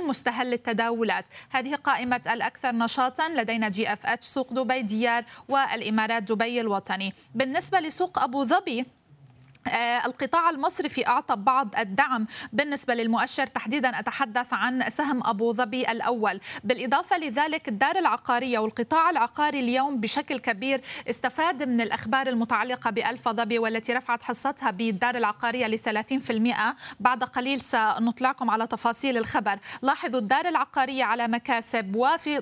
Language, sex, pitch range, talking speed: Arabic, female, 230-270 Hz, 125 wpm